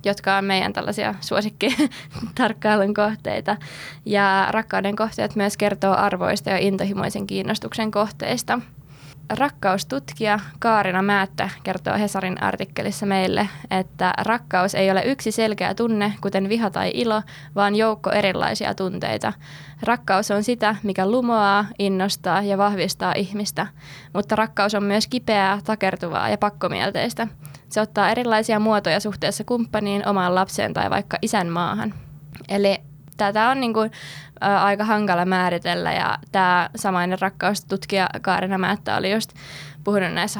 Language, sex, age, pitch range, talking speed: Finnish, female, 20-39, 185-210 Hz, 130 wpm